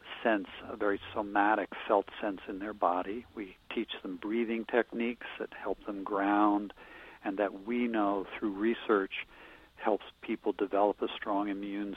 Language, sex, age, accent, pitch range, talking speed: English, male, 50-69, American, 100-115 Hz, 150 wpm